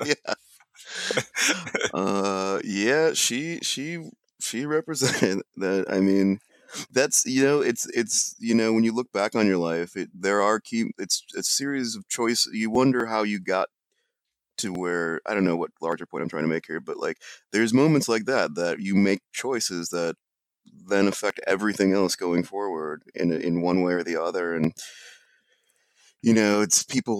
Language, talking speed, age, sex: English, 175 wpm, 30-49, male